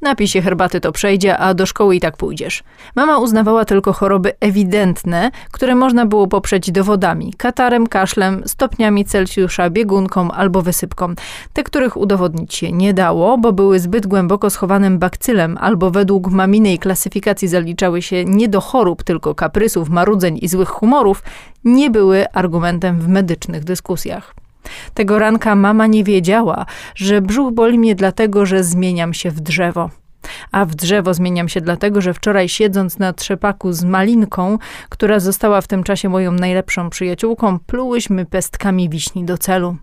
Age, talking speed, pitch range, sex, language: 20-39, 150 wpm, 180-210 Hz, female, Polish